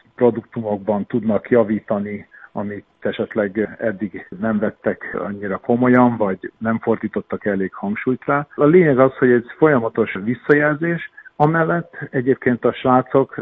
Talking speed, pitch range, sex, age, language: 120 wpm, 105-125 Hz, male, 50-69, Hungarian